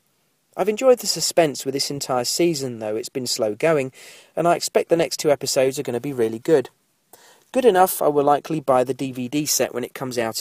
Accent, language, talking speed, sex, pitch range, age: British, English, 225 wpm, male, 125-170 Hz, 40-59